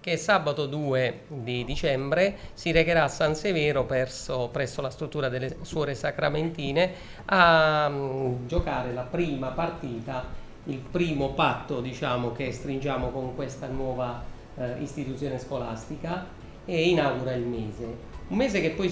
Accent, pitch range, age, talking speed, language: Italian, 125-160 Hz, 40-59, 135 wpm, English